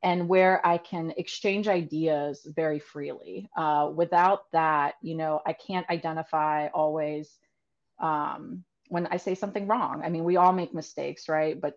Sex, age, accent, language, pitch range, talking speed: female, 30-49, American, English, 160-205 Hz, 160 wpm